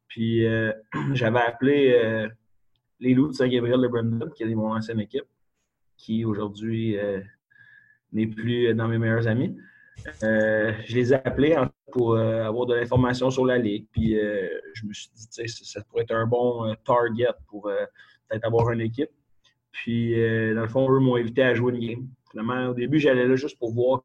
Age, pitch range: 30-49, 110-125 Hz